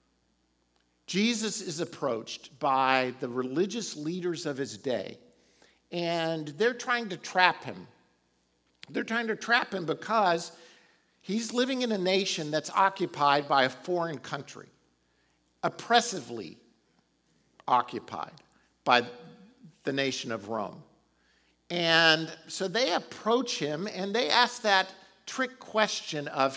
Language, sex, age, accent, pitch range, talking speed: English, male, 50-69, American, 150-215 Hz, 115 wpm